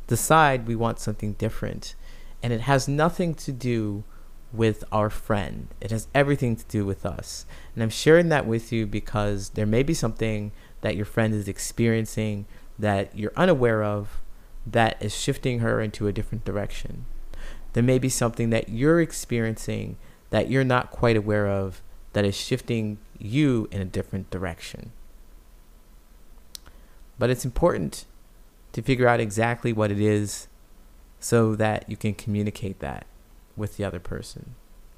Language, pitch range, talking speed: English, 105-120 Hz, 155 wpm